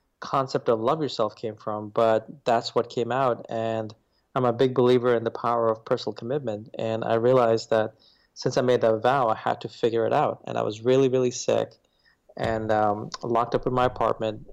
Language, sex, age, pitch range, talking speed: English, male, 20-39, 115-135 Hz, 205 wpm